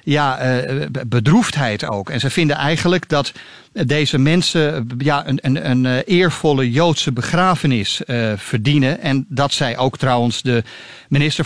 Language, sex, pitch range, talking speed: Dutch, male, 125-155 Hz, 135 wpm